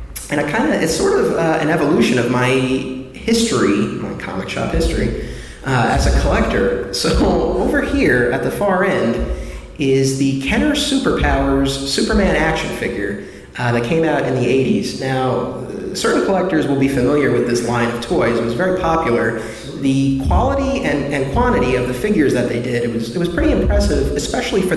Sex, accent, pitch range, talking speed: male, American, 120-155 Hz, 175 wpm